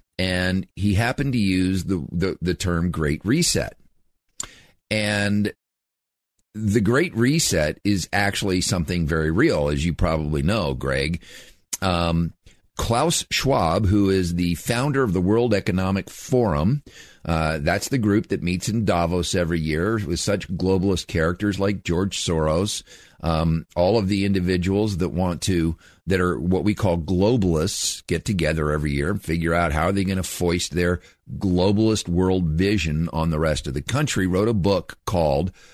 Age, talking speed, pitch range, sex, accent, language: 50-69, 160 wpm, 85-105 Hz, male, American, English